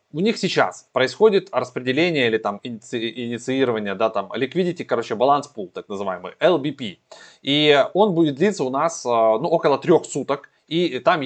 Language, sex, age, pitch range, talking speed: Russian, male, 20-39, 110-165 Hz, 155 wpm